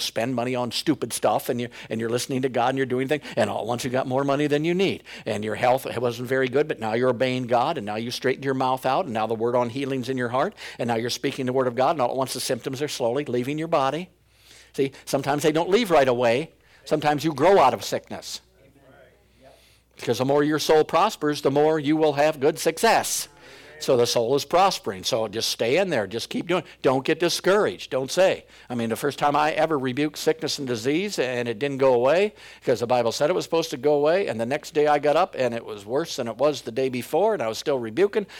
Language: English